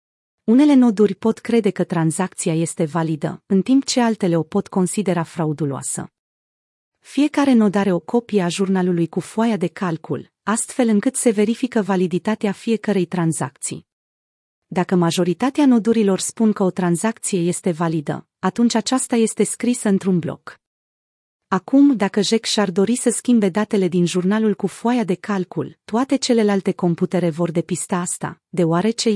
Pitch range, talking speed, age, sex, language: 175-220 Hz, 145 wpm, 30-49, female, Romanian